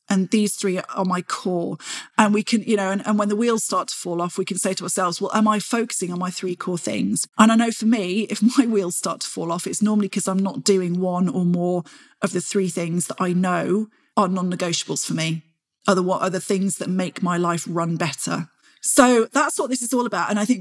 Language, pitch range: English, 185-230 Hz